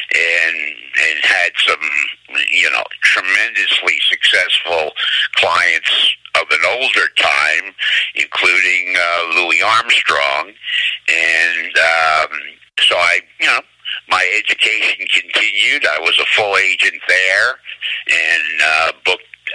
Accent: American